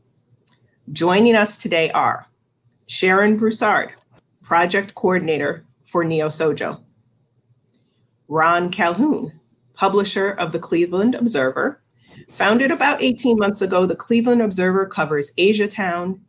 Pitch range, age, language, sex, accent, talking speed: 155-210 Hz, 40-59, English, female, American, 105 wpm